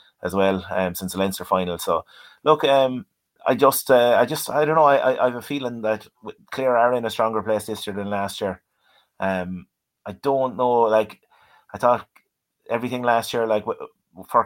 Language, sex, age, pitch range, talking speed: English, male, 30-49, 105-115 Hz, 200 wpm